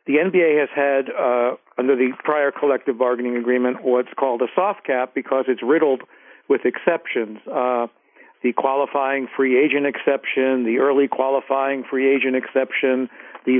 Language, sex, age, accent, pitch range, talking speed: English, male, 50-69, American, 125-140 Hz, 150 wpm